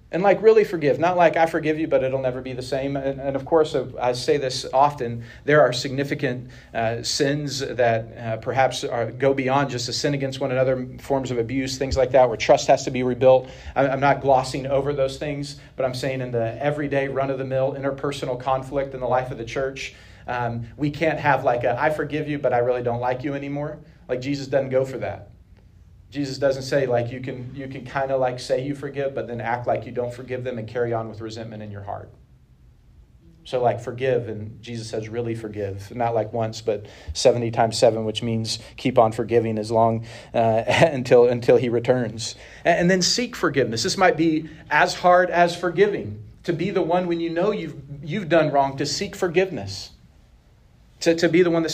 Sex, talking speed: male, 215 wpm